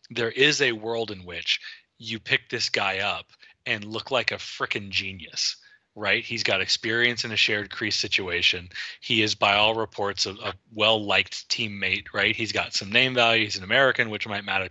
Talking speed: 190 wpm